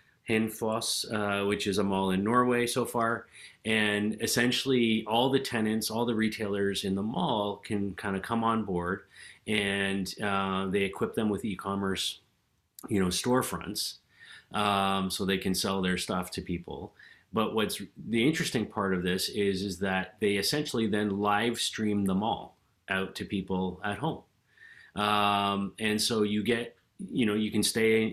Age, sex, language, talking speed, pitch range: 30-49, male, English, 165 wpm, 100-115 Hz